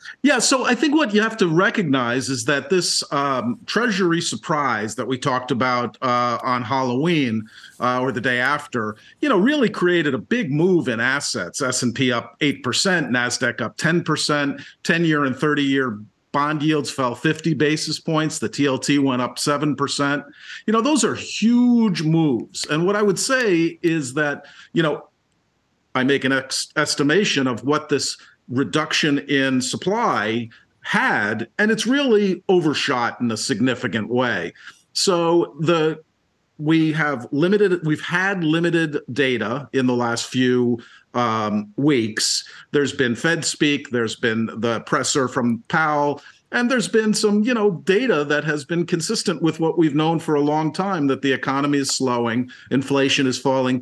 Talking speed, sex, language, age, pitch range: 160 wpm, male, English, 50-69, 130-170 Hz